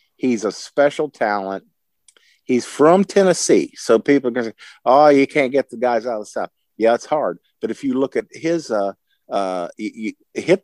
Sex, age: male, 50-69